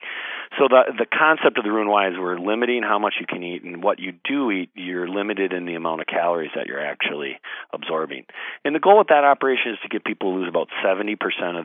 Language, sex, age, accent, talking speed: English, male, 40-59, American, 230 wpm